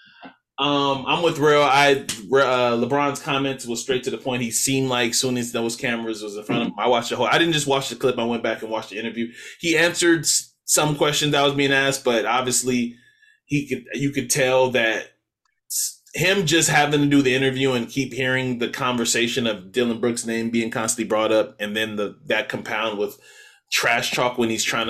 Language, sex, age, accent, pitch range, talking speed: English, male, 20-39, American, 115-170 Hz, 215 wpm